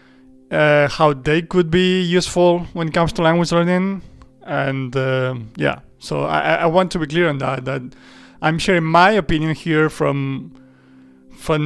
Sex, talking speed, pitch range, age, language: male, 165 wpm, 135-170 Hz, 30-49, English